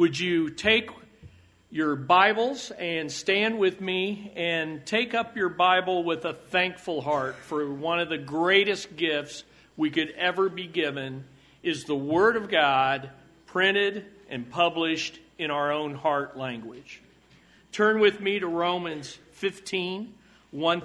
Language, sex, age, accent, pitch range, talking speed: English, male, 50-69, American, 150-195 Hz, 140 wpm